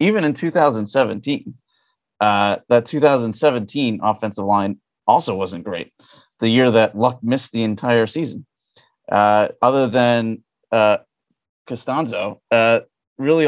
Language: English